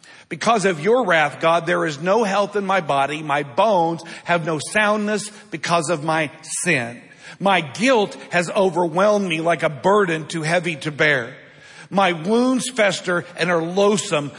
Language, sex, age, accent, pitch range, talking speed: English, male, 50-69, American, 150-190 Hz, 165 wpm